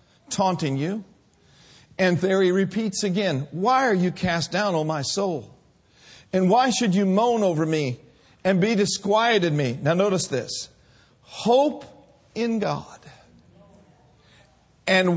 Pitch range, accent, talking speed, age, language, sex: 140-205 Hz, American, 130 wpm, 50-69, English, male